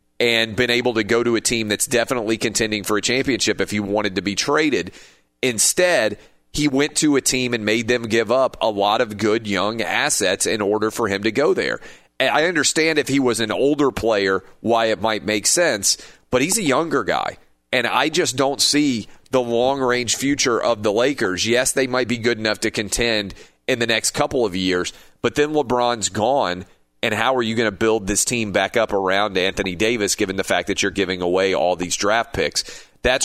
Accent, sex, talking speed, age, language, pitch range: American, male, 210 wpm, 30-49, English, 100-120 Hz